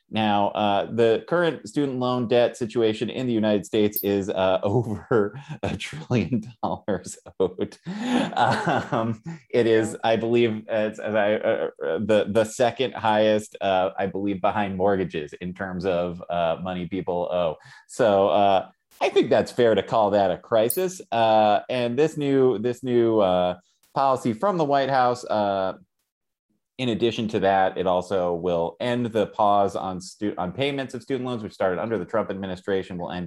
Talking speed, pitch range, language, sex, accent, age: 170 wpm, 100-125 Hz, English, male, American, 30-49